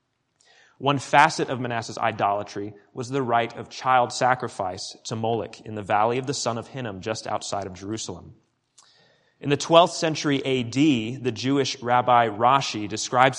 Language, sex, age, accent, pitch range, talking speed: English, male, 30-49, American, 115-145 Hz, 155 wpm